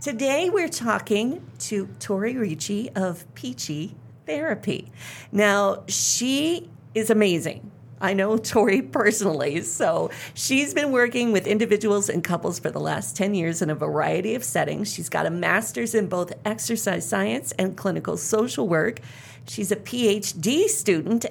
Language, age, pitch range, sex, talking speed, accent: English, 40-59, 160-220 Hz, female, 145 wpm, American